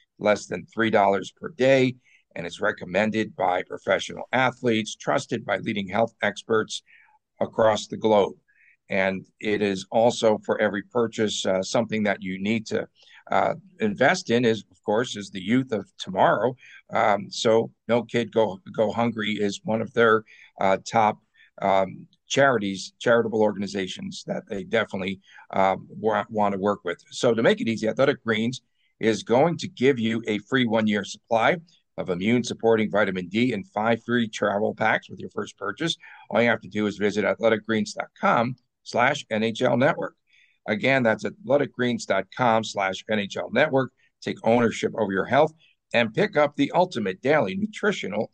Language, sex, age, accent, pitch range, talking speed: English, male, 50-69, American, 105-125 Hz, 160 wpm